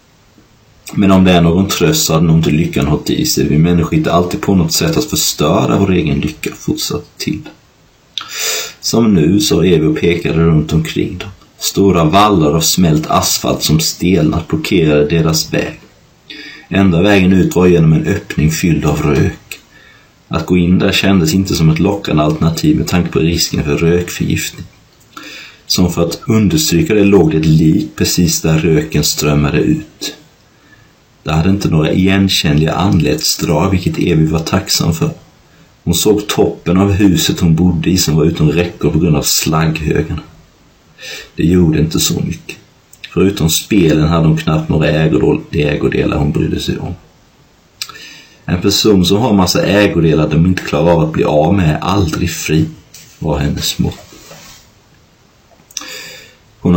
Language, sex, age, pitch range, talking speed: Swedish, male, 30-49, 80-95 Hz, 160 wpm